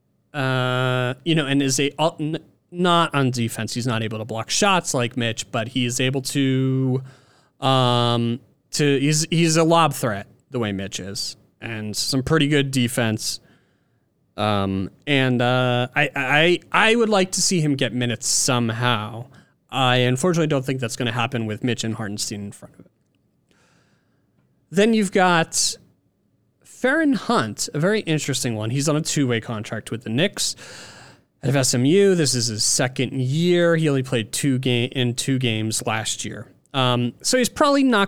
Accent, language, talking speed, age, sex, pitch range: American, English, 170 wpm, 30-49, male, 120-165 Hz